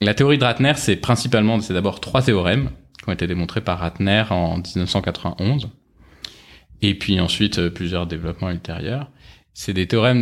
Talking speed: 165 wpm